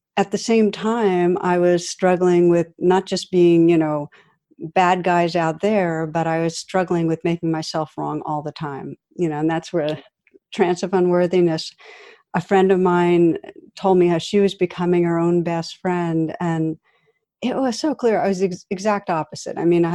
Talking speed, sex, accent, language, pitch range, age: 195 wpm, female, American, English, 165-195 Hz, 50-69